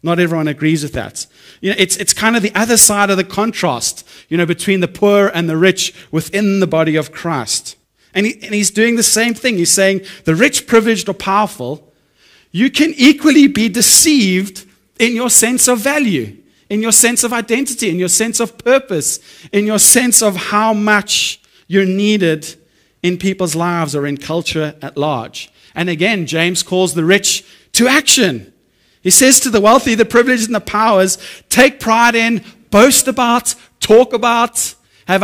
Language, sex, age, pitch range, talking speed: English, male, 30-49, 150-220 Hz, 180 wpm